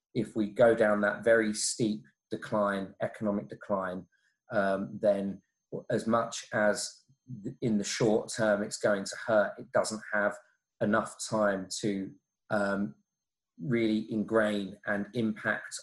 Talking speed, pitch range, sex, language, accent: 130 wpm, 105-120 Hz, male, English, British